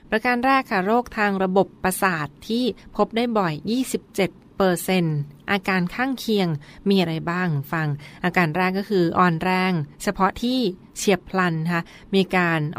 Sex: female